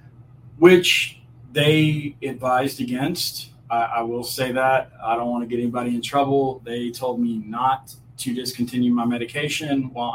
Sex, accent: male, American